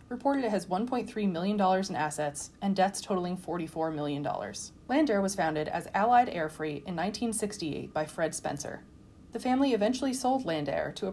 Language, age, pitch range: English, 20-39, 170-225 Hz